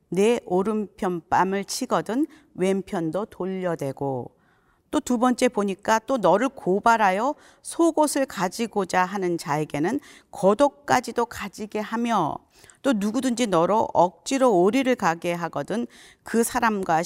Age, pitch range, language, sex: 40-59, 180-250 Hz, Korean, female